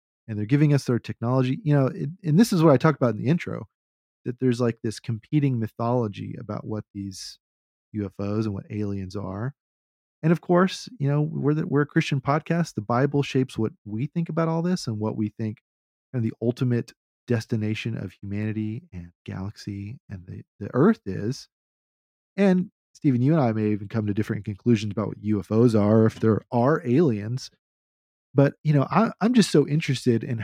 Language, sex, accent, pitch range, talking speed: English, male, American, 105-145 Hz, 195 wpm